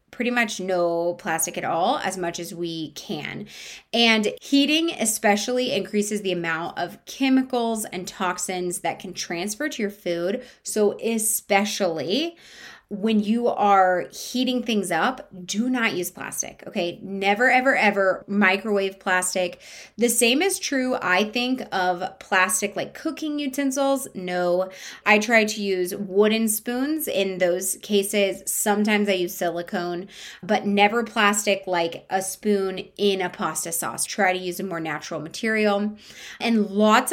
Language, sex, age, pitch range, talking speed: English, female, 20-39, 185-225 Hz, 145 wpm